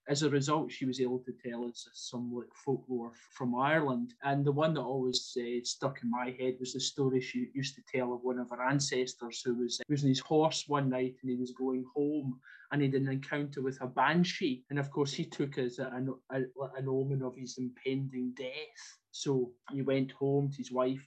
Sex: male